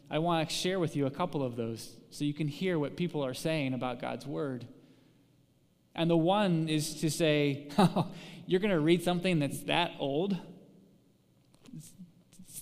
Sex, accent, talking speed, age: male, American, 170 wpm, 20-39